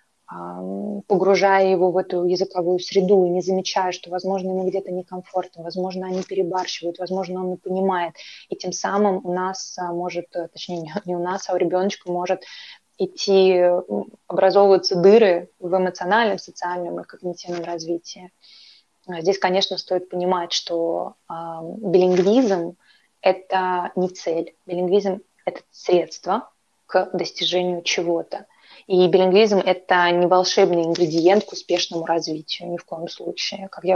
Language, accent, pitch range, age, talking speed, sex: Russian, native, 175-190 Hz, 20-39, 135 wpm, female